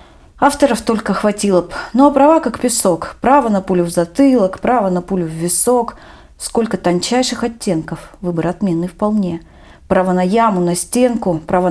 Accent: native